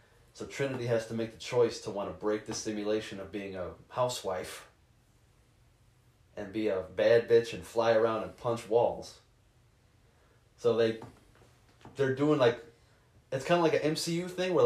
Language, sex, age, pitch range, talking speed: English, male, 20-39, 110-140 Hz, 170 wpm